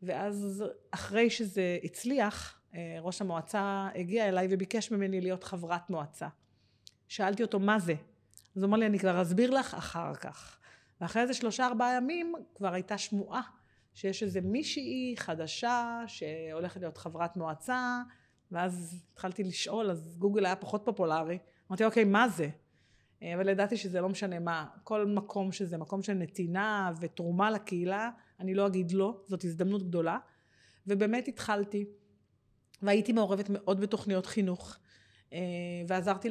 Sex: female